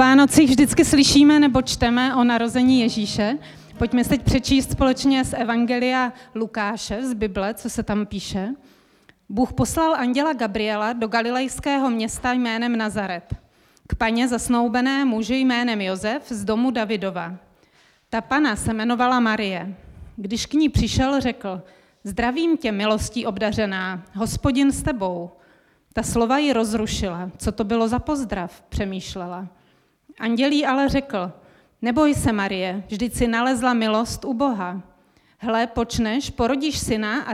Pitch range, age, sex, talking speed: 210-255 Hz, 30-49, female, 135 wpm